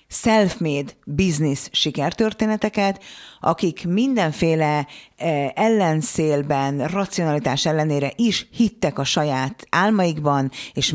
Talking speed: 75 wpm